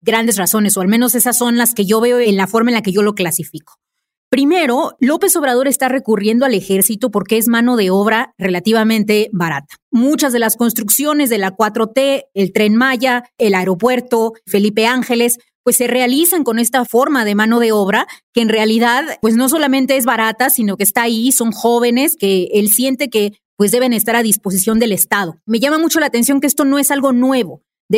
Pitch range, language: 205-255 Hz, Spanish